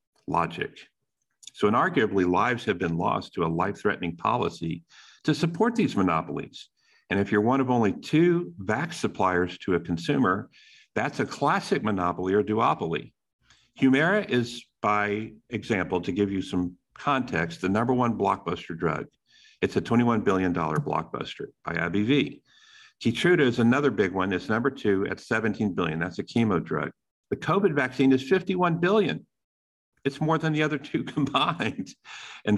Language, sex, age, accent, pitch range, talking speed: English, male, 50-69, American, 90-135 Hz, 155 wpm